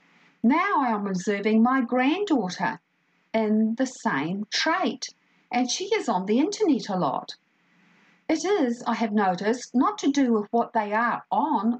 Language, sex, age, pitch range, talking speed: English, female, 50-69, 205-275 Hz, 160 wpm